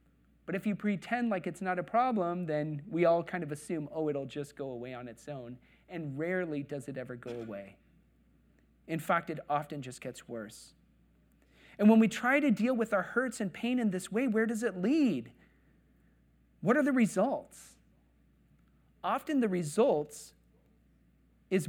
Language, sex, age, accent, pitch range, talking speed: English, male, 40-59, American, 145-215 Hz, 175 wpm